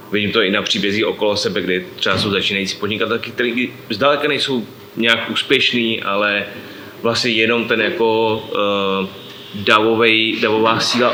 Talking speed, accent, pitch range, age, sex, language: 135 wpm, native, 100-120 Hz, 30-49, male, Czech